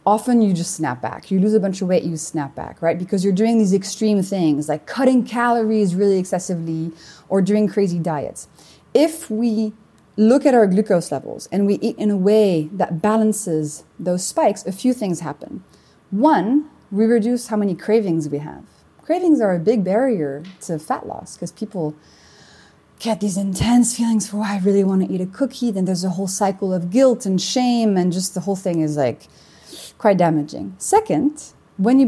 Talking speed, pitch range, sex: 195 wpm, 170-225 Hz, female